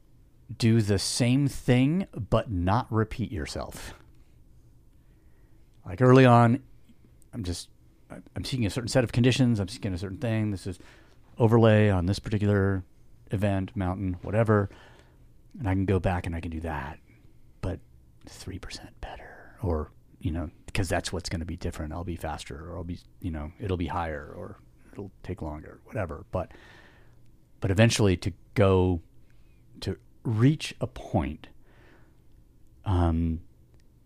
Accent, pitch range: American, 85-110 Hz